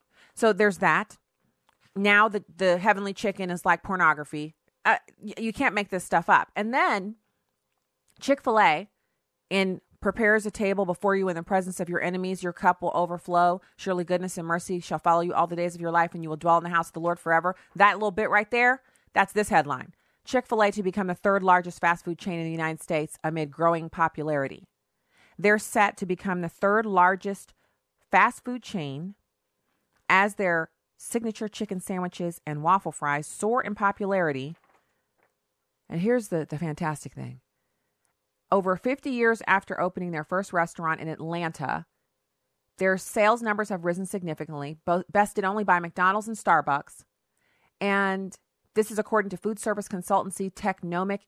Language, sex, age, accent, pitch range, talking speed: English, female, 30-49, American, 165-205 Hz, 165 wpm